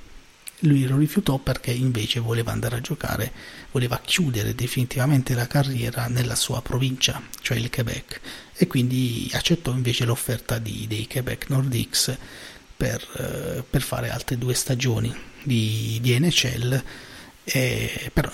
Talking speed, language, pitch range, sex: 130 wpm, Italian, 115-135 Hz, male